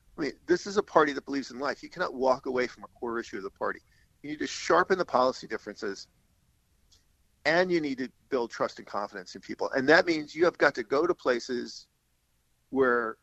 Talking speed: 220 wpm